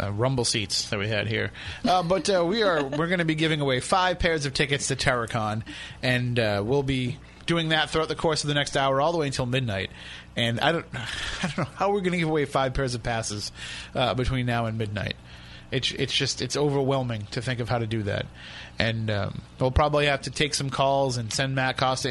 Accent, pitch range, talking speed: American, 115-145 Hz, 240 wpm